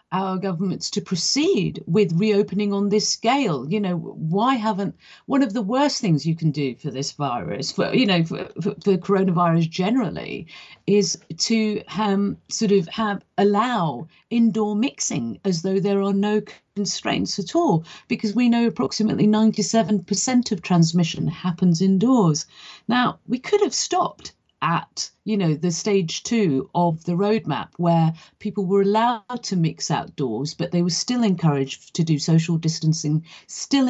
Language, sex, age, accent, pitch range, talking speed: English, female, 40-59, British, 175-215 Hz, 160 wpm